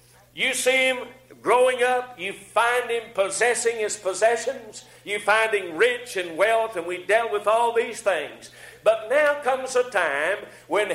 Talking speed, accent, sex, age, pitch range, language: 165 wpm, American, male, 50-69, 190-260 Hz, English